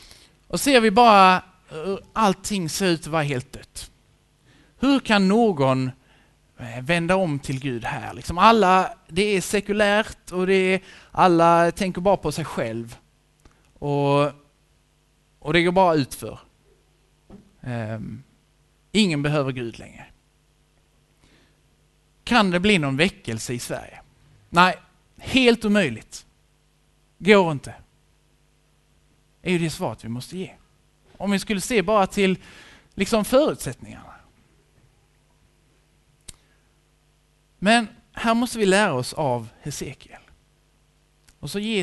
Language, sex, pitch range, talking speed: Swedish, male, 135-200 Hz, 120 wpm